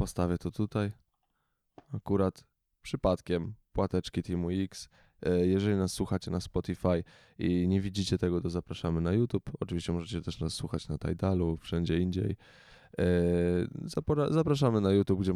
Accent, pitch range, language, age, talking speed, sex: native, 90-115 Hz, Polish, 10-29, 135 wpm, male